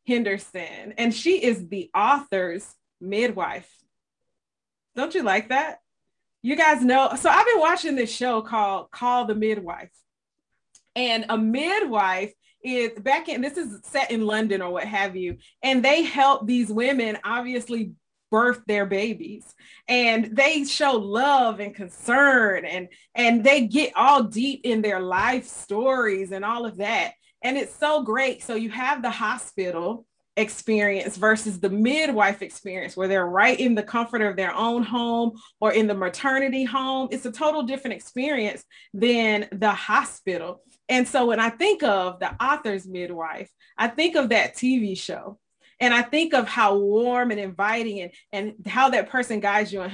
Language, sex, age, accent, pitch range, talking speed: English, female, 30-49, American, 200-255 Hz, 165 wpm